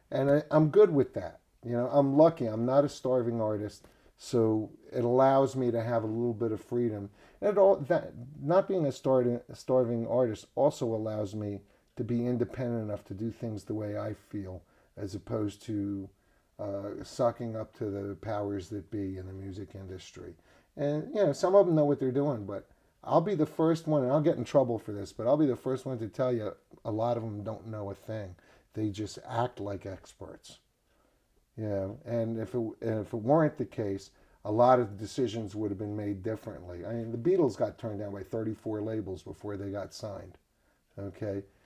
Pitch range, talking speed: 100-130 Hz, 210 wpm